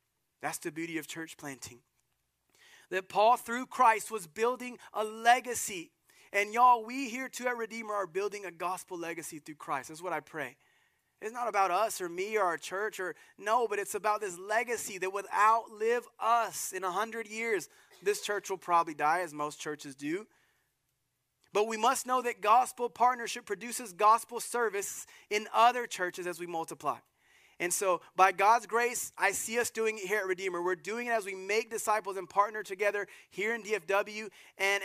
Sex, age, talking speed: male, 30-49, 185 wpm